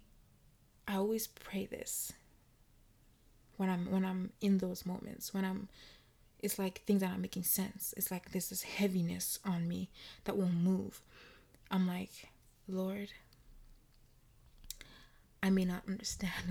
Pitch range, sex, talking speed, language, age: 185-205 Hz, female, 140 wpm, English, 20-39